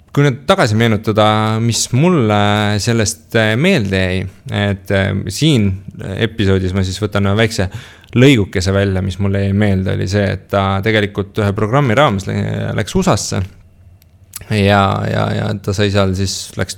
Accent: Finnish